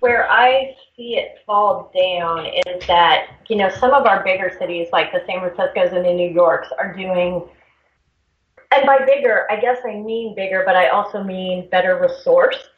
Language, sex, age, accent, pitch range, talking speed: English, female, 30-49, American, 185-255 Hz, 185 wpm